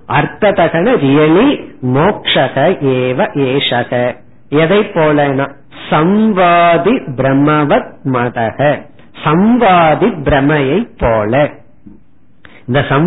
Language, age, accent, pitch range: Tamil, 50-69, native, 140-185 Hz